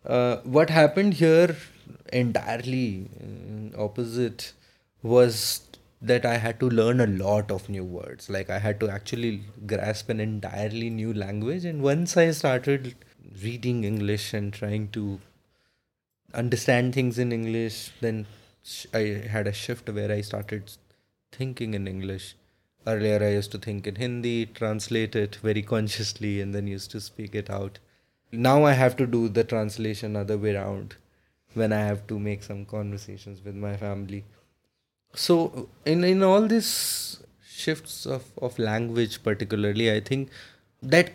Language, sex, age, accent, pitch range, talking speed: English, male, 20-39, Indian, 105-125 Hz, 150 wpm